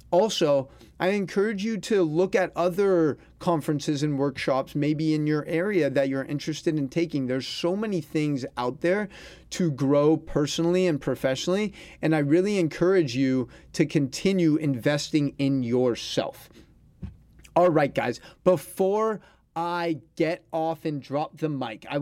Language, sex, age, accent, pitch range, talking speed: English, male, 30-49, American, 140-180 Hz, 145 wpm